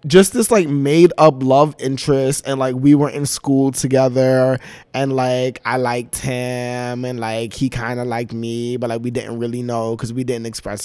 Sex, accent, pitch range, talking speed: male, American, 115-135 Hz, 195 wpm